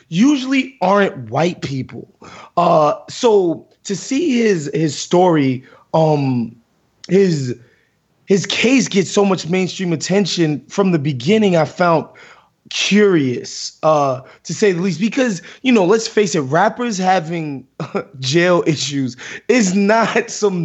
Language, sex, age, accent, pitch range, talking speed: English, male, 20-39, American, 145-190 Hz, 130 wpm